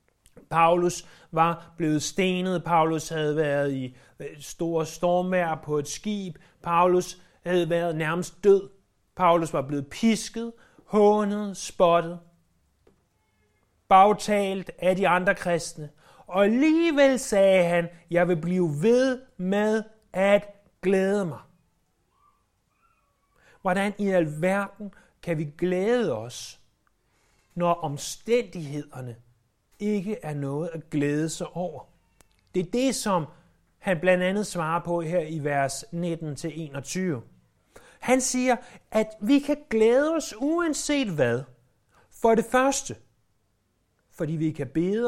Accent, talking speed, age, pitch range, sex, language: native, 115 wpm, 30-49, 150-210 Hz, male, Danish